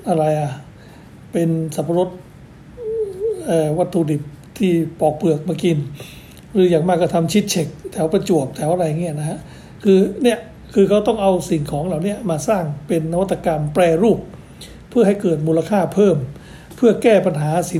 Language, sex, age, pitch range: Thai, male, 60-79, 155-190 Hz